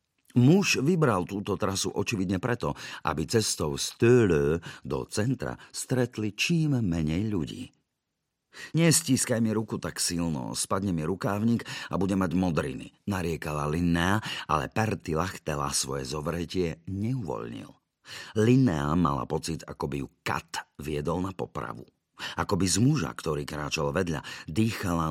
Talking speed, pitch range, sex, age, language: 125 wpm, 75-100 Hz, male, 50-69, Slovak